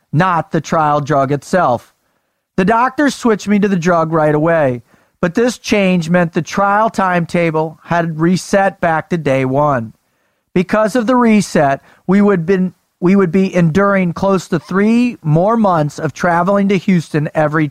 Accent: American